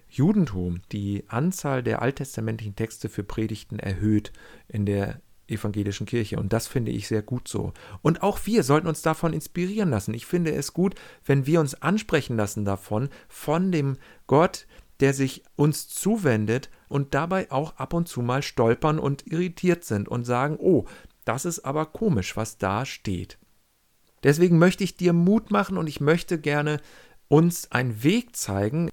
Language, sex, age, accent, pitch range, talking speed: German, male, 40-59, German, 110-160 Hz, 165 wpm